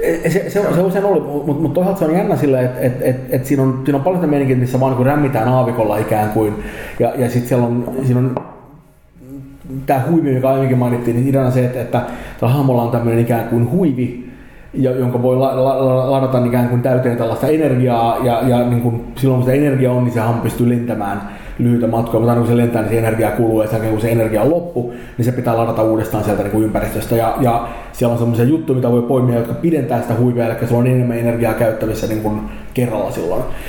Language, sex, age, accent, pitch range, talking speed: Finnish, male, 30-49, native, 115-135 Hz, 225 wpm